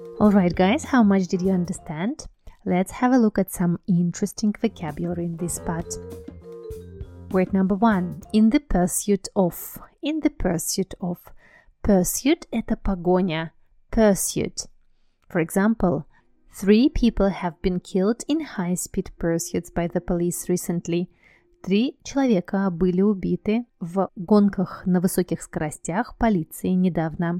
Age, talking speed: 30-49, 125 wpm